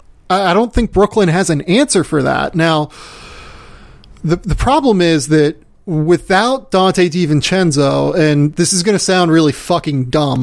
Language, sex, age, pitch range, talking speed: English, male, 30-49, 145-180 Hz, 150 wpm